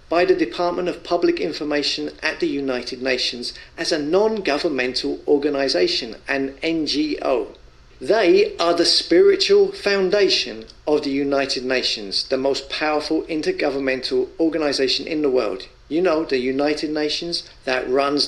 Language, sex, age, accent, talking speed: English, male, 40-59, British, 130 wpm